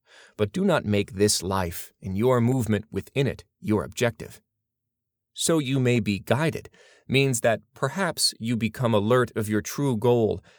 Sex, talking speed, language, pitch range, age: male, 160 wpm, English, 100-120 Hz, 30-49